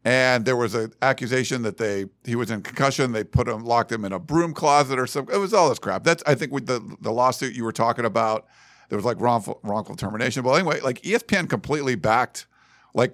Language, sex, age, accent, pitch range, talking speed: English, male, 50-69, American, 115-145 Hz, 235 wpm